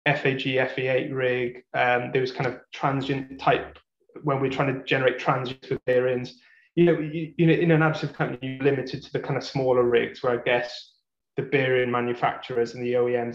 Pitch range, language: 125-160 Hz, English